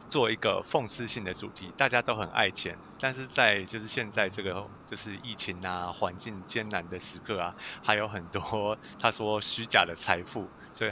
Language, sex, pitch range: Chinese, male, 95-110 Hz